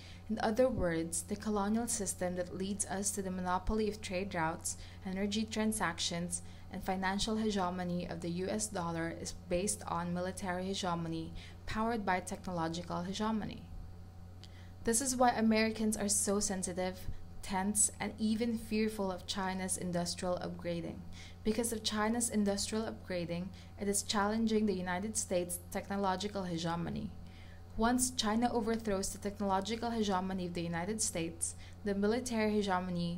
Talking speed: 135 wpm